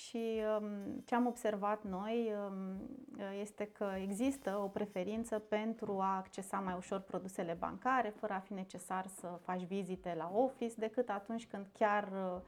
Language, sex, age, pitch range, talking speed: Romanian, female, 30-49, 190-230 Hz, 145 wpm